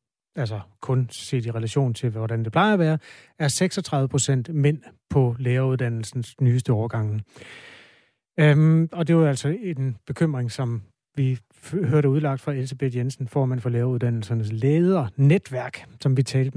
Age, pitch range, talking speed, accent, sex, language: 30-49, 125-155 Hz, 150 wpm, native, male, Danish